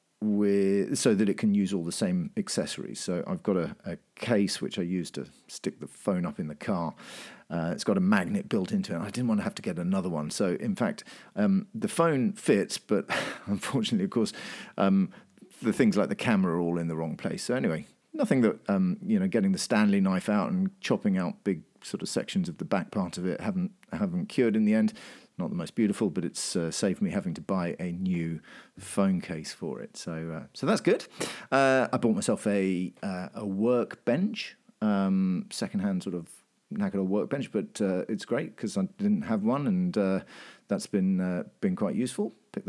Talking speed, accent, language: 215 wpm, British, English